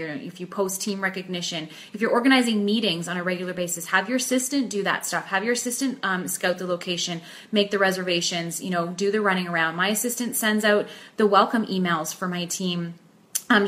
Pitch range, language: 180-225 Hz, English